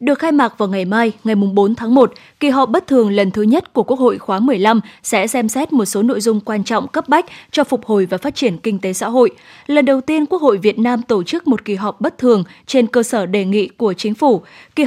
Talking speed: 265 wpm